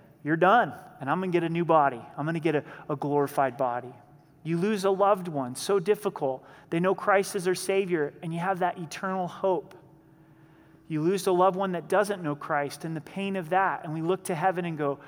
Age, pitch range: 30-49, 160-200 Hz